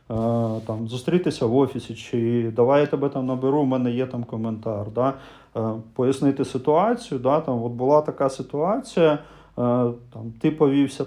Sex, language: male, Ukrainian